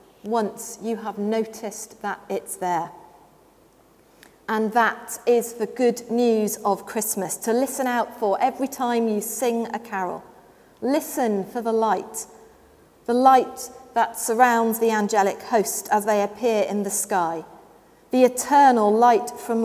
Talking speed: 140 wpm